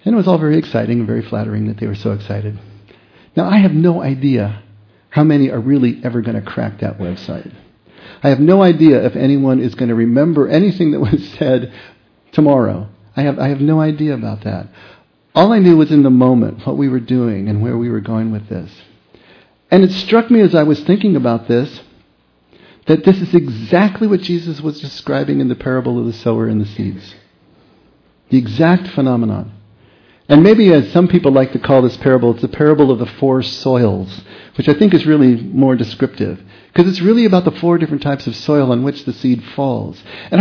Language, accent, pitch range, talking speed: English, American, 115-165 Hz, 205 wpm